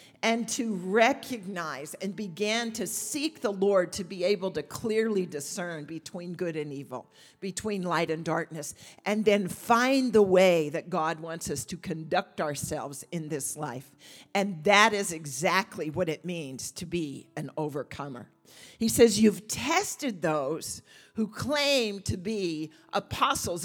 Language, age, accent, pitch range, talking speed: English, 50-69, American, 170-235 Hz, 150 wpm